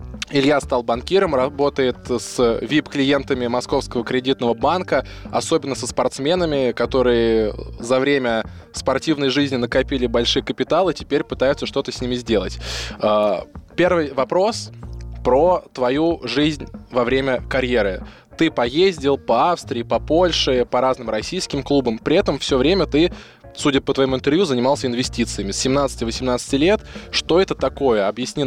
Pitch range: 115-140 Hz